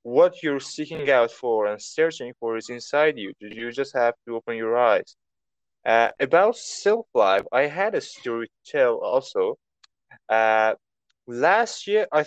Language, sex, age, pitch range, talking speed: English, male, 20-39, 120-195 Hz, 160 wpm